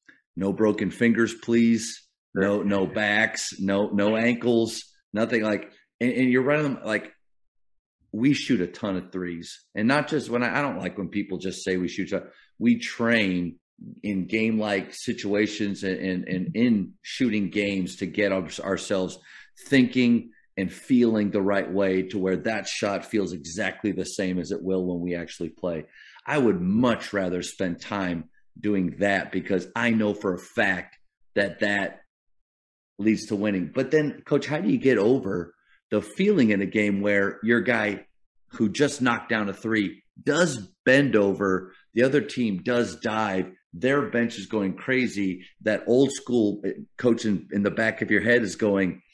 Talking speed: 170 wpm